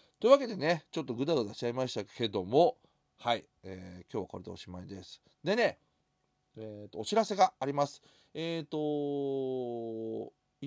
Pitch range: 100-150 Hz